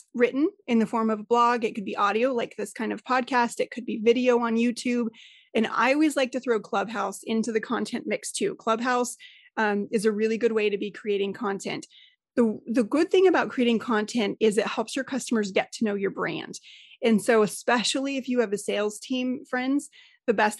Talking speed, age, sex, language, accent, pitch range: 215 wpm, 30-49, female, English, American, 215-260 Hz